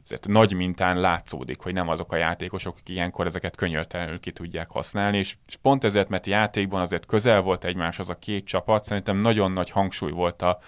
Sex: male